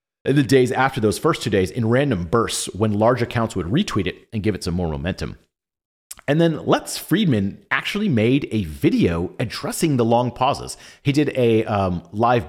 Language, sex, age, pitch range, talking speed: English, male, 30-49, 95-125 Hz, 185 wpm